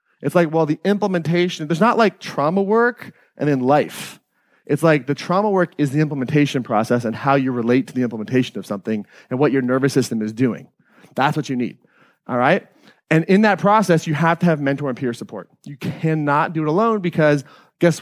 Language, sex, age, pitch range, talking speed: English, male, 30-49, 125-175 Hz, 210 wpm